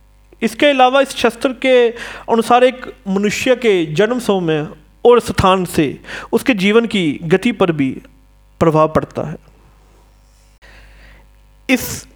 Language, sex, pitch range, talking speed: Hindi, male, 170-255 Hz, 120 wpm